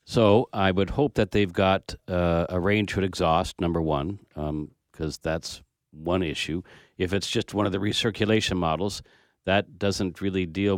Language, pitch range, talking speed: English, 85-100 Hz, 175 wpm